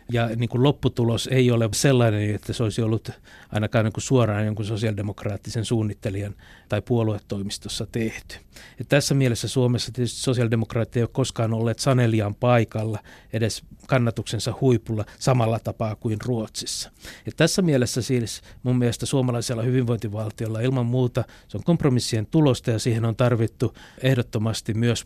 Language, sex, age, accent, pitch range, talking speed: Finnish, male, 60-79, native, 110-125 Hz, 145 wpm